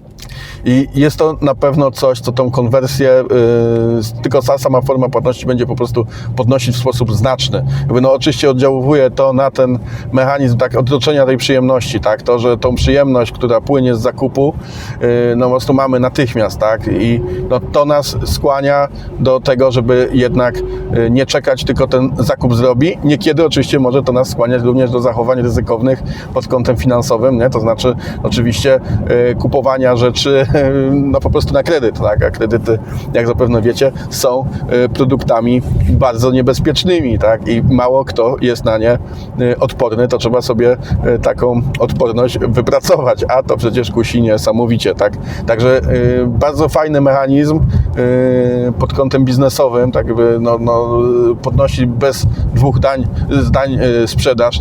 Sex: male